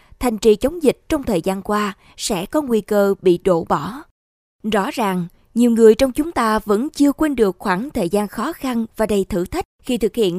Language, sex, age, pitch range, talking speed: Vietnamese, female, 20-39, 195-245 Hz, 220 wpm